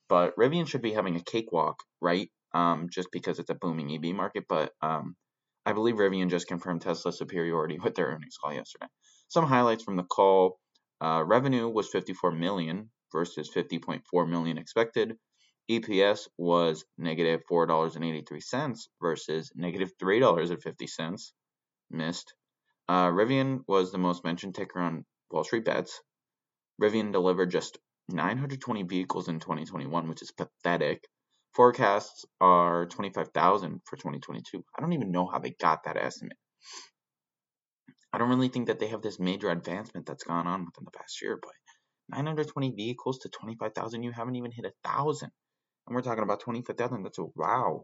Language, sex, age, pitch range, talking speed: English, male, 20-39, 85-115 Hz, 155 wpm